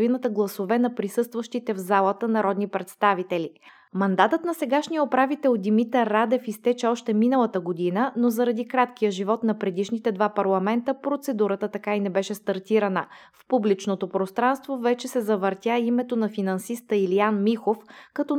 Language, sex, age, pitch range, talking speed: Bulgarian, female, 20-39, 200-245 Hz, 140 wpm